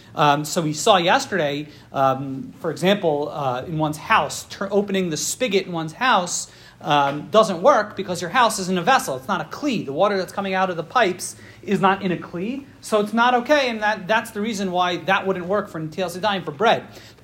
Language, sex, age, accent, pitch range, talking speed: English, male, 40-59, American, 175-225 Hz, 220 wpm